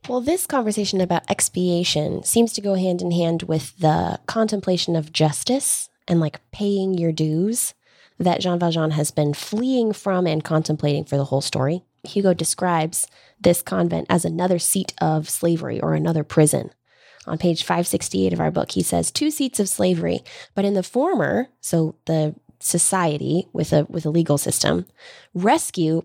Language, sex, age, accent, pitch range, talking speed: English, female, 20-39, American, 155-195 Hz, 165 wpm